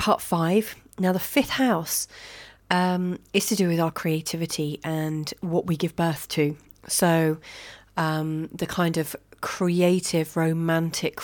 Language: English